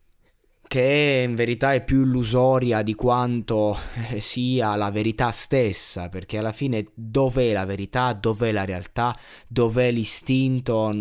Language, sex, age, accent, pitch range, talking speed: Italian, male, 20-39, native, 100-125 Hz, 125 wpm